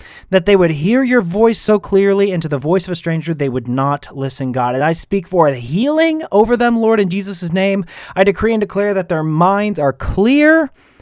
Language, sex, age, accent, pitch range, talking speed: English, male, 30-49, American, 145-210 Hz, 225 wpm